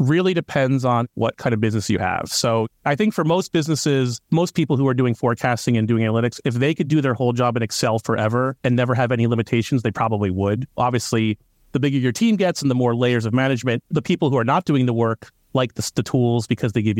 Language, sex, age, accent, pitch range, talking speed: English, male, 30-49, American, 115-140 Hz, 245 wpm